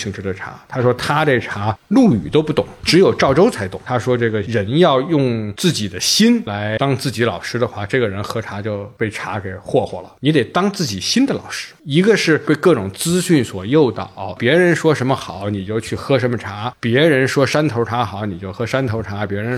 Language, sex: Chinese, male